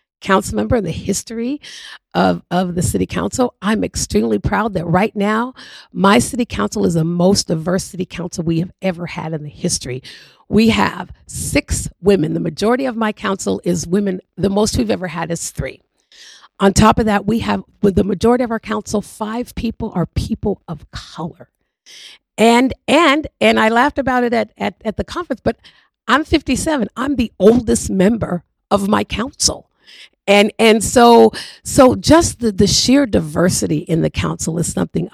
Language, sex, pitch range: English, female, 175-230 Hz